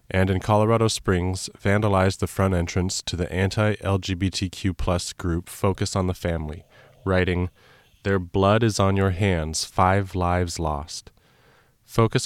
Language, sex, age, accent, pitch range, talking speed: English, male, 30-49, American, 90-105 Hz, 135 wpm